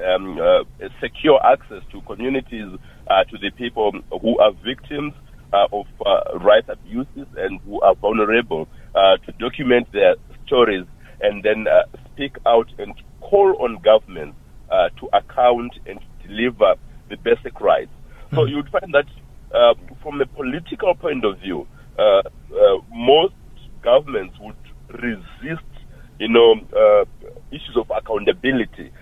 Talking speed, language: 140 wpm, English